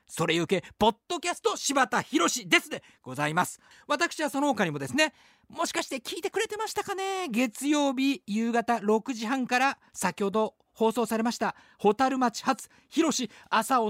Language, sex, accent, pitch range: Japanese, male, native, 205-310 Hz